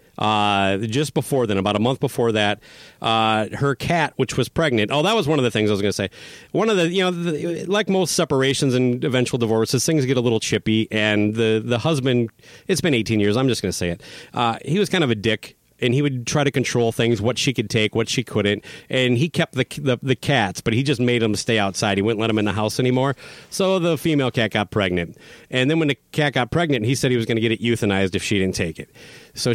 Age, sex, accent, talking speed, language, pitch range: 40-59, male, American, 260 wpm, English, 110-145 Hz